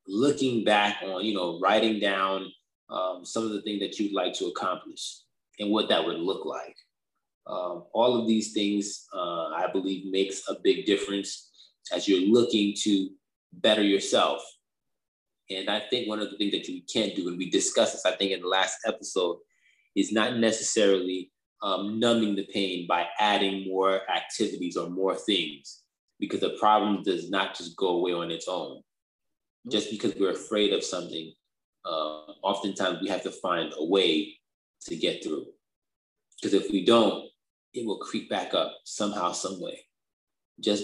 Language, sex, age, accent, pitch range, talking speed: English, male, 20-39, American, 90-115 Hz, 170 wpm